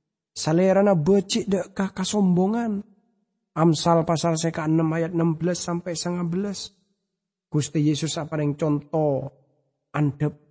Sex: male